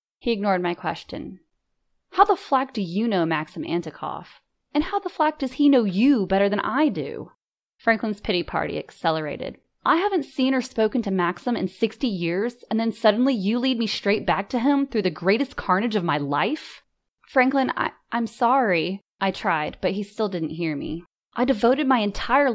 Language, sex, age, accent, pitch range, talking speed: English, female, 20-39, American, 180-255 Hz, 185 wpm